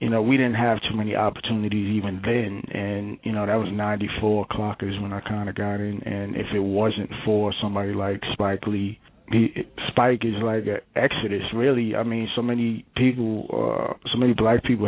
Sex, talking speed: male, 200 wpm